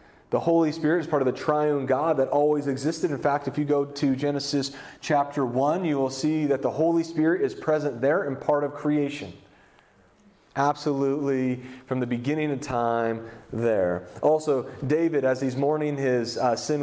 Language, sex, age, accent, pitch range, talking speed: English, male, 30-49, American, 130-150 Hz, 180 wpm